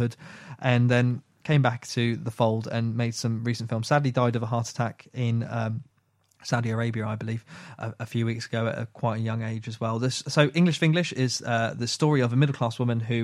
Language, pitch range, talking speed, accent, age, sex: English, 115-145 Hz, 230 wpm, British, 20-39, male